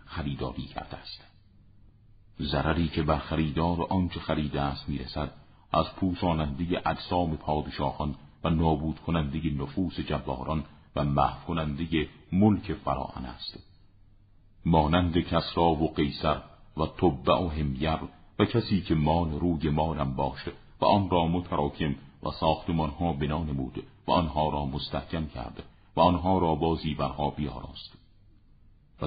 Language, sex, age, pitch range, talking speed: Persian, male, 50-69, 75-90 Hz, 120 wpm